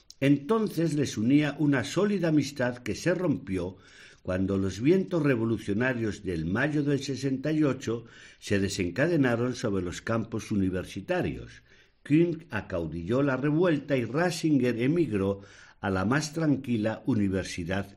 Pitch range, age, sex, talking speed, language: 100-150 Hz, 60-79, male, 115 wpm, Spanish